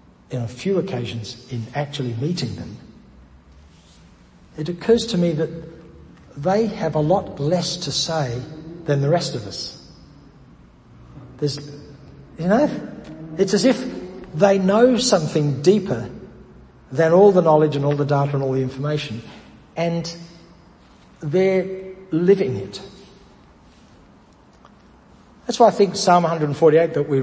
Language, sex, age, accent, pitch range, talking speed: English, male, 60-79, Australian, 125-175 Hz, 130 wpm